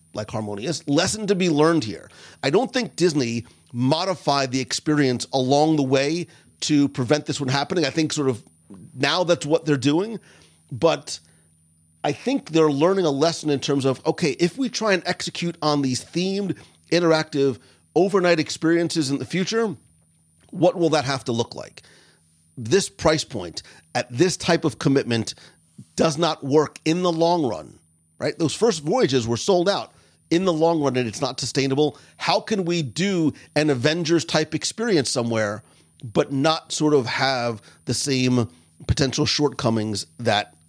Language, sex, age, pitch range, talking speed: English, male, 40-59, 125-165 Hz, 165 wpm